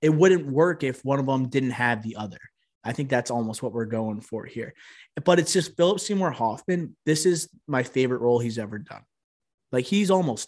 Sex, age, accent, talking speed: male, 20-39, American, 210 wpm